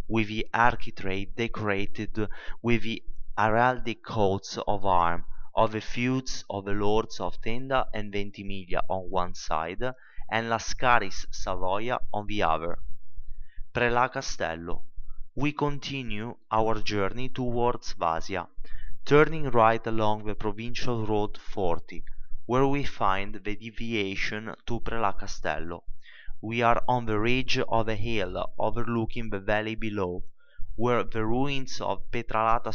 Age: 30-49